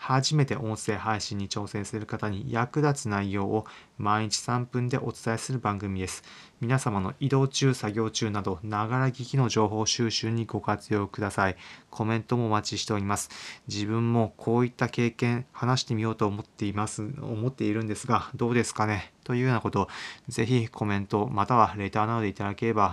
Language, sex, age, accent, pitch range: Japanese, male, 20-39, native, 105-125 Hz